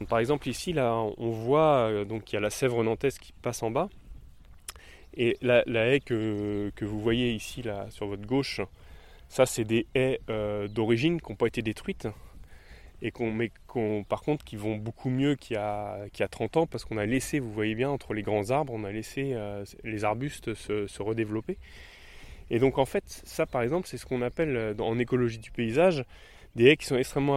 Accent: French